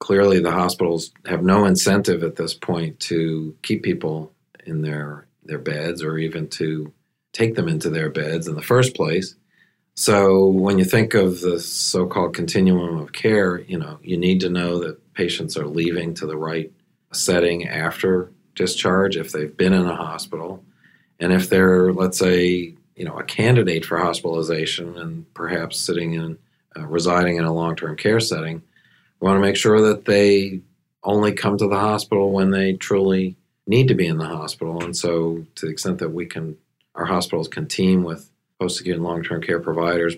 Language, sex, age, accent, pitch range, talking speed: English, male, 40-59, American, 80-95 Hz, 180 wpm